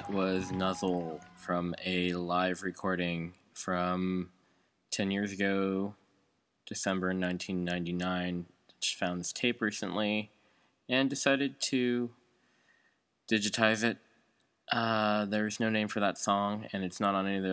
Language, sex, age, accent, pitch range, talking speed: English, male, 20-39, American, 85-95 Hz, 125 wpm